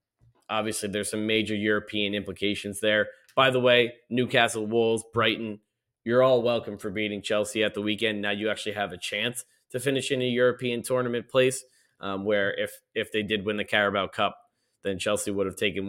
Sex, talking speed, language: male, 190 wpm, English